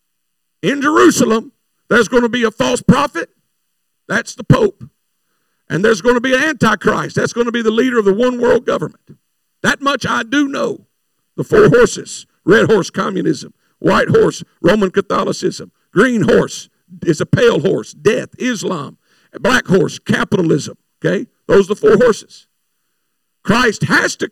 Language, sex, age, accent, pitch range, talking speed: English, male, 50-69, American, 185-260 Hz, 160 wpm